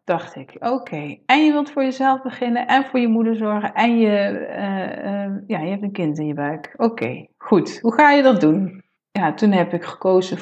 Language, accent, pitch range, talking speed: Dutch, Dutch, 175-230 Hz, 230 wpm